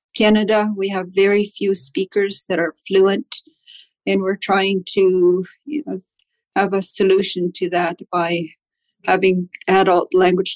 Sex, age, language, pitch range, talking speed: female, 50-69, English, 180-210 Hz, 125 wpm